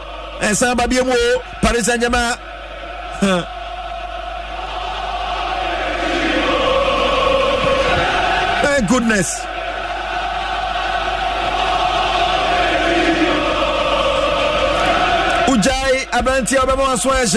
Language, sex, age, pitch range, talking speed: English, male, 50-69, 240-355 Hz, 50 wpm